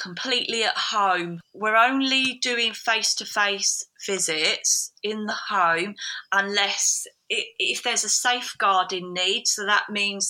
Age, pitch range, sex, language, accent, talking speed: 30-49, 180-210 Hz, female, English, British, 115 wpm